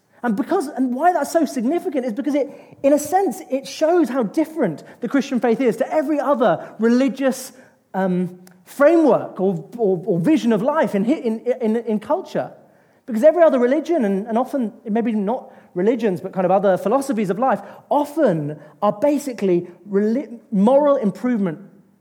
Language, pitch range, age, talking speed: English, 195-270 Hz, 30-49, 165 wpm